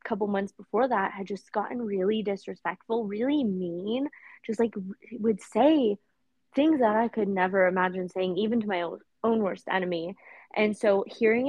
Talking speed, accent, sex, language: 160 wpm, American, female, English